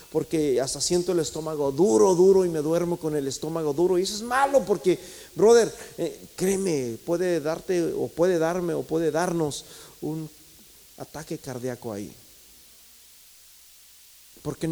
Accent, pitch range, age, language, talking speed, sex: Mexican, 175-260 Hz, 40-59, Spanish, 145 wpm, male